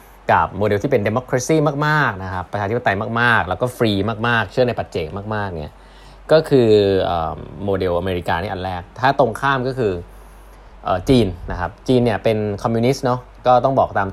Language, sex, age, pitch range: Thai, male, 20-39, 95-135 Hz